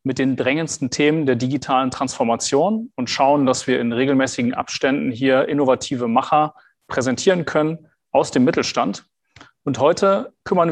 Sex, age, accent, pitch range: male, 30-49, German, 130-160 Hz